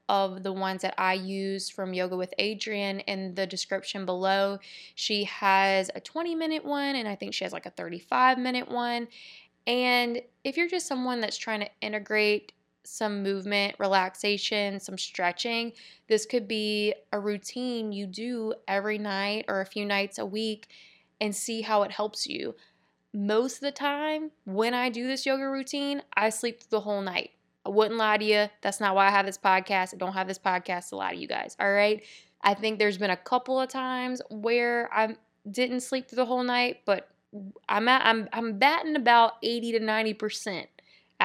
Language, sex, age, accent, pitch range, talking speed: English, female, 20-39, American, 190-235 Hz, 190 wpm